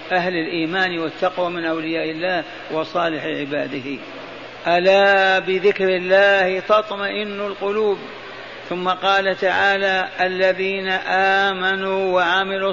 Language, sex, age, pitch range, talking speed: Arabic, male, 50-69, 185-205 Hz, 90 wpm